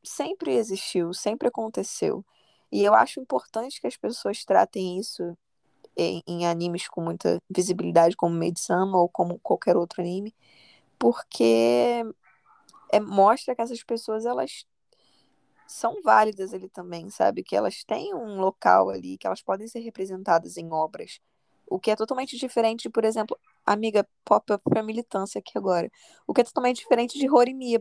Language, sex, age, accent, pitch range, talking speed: Portuguese, female, 10-29, Brazilian, 190-260 Hz, 155 wpm